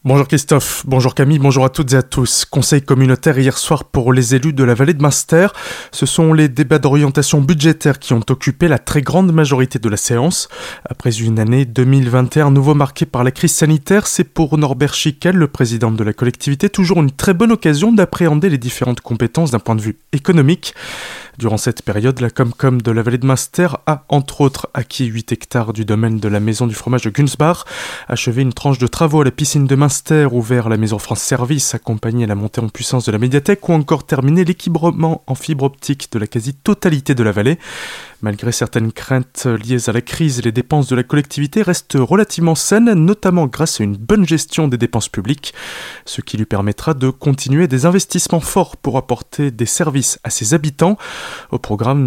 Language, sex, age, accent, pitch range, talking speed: French, male, 20-39, French, 120-160 Hz, 200 wpm